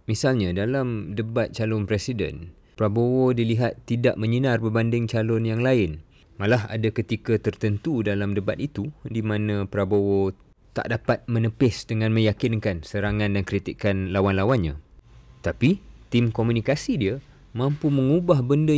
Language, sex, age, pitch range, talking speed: Malay, male, 20-39, 95-120 Hz, 125 wpm